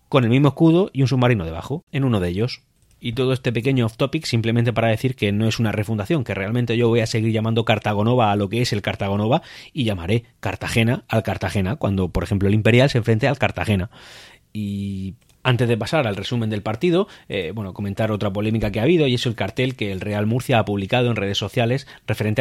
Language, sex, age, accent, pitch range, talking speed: Spanish, male, 30-49, Spanish, 105-135 Hz, 220 wpm